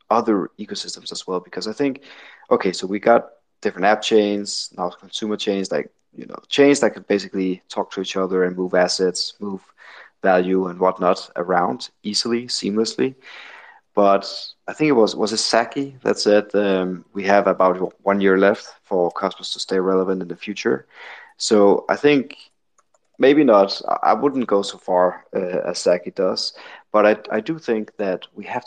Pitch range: 95-110 Hz